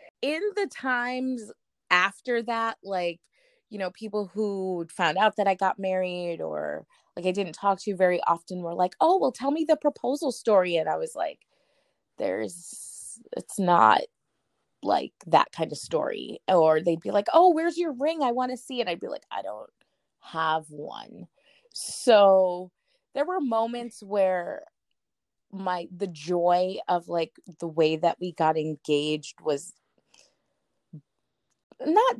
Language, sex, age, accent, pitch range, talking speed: English, female, 20-39, American, 170-240 Hz, 155 wpm